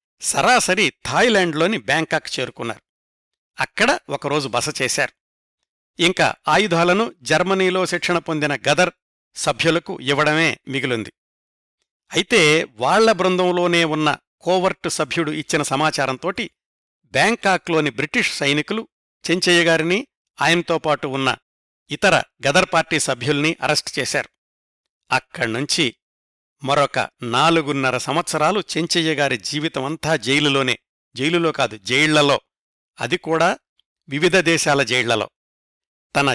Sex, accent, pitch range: male, native, 145-175 Hz